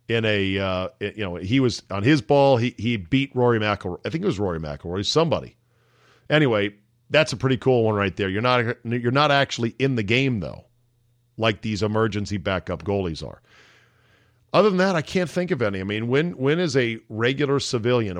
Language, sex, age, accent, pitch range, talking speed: English, male, 40-59, American, 105-135 Hz, 200 wpm